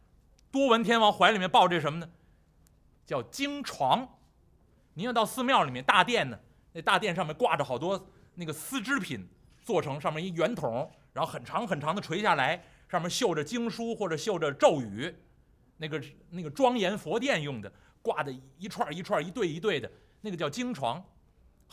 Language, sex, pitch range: Chinese, male, 135-205 Hz